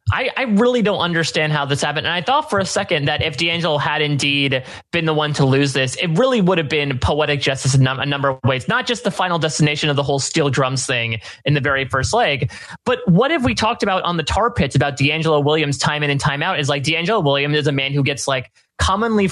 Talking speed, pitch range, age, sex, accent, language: 260 wpm, 140-180 Hz, 30-49, male, American, English